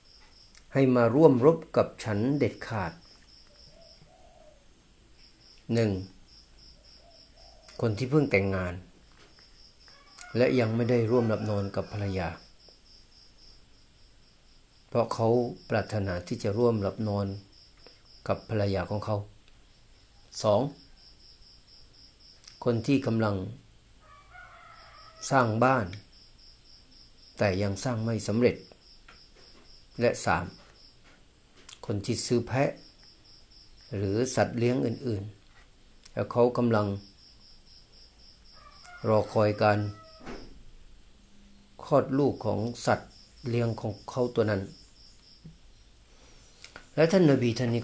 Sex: male